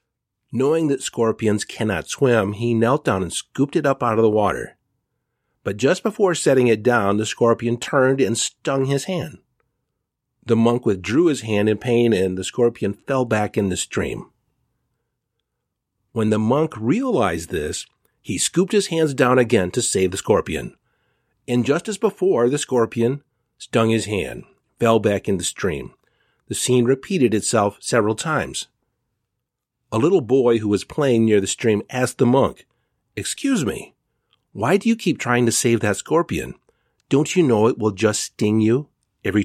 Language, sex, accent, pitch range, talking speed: English, male, American, 105-130 Hz, 170 wpm